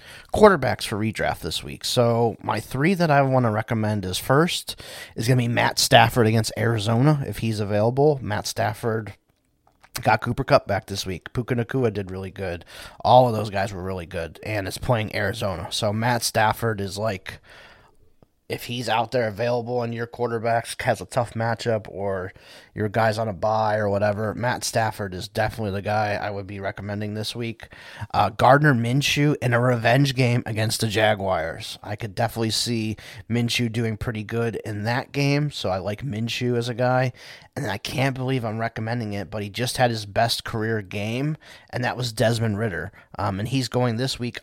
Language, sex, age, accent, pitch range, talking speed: English, male, 30-49, American, 105-125 Hz, 190 wpm